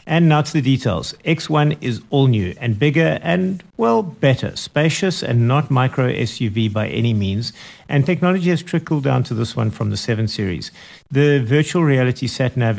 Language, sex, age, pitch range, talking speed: English, male, 50-69, 110-150 Hz, 180 wpm